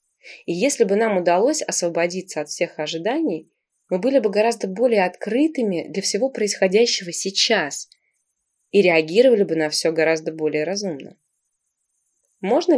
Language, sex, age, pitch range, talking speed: Russian, female, 20-39, 170-230 Hz, 130 wpm